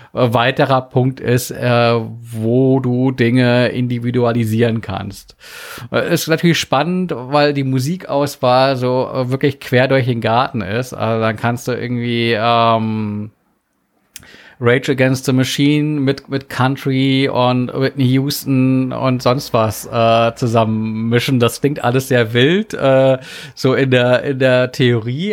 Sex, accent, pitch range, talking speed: male, German, 115-135 Hz, 135 wpm